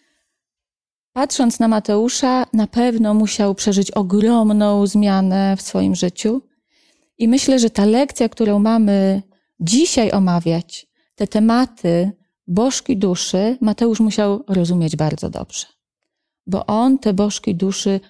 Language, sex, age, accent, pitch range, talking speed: Polish, female, 30-49, native, 195-250 Hz, 115 wpm